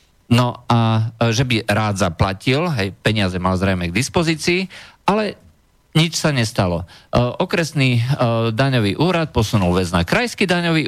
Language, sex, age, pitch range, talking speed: Slovak, male, 50-69, 105-140 Hz, 130 wpm